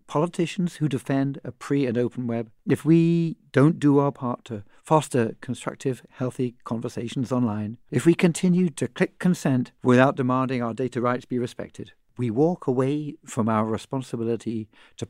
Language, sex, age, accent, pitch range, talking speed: English, male, 60-79, British, 115-150 Hz, 160 wpm